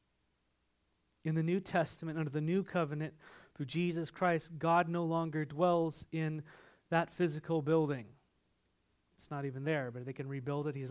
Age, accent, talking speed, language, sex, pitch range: 30-49, American, 165 wpm, English, male, 125-160 Hz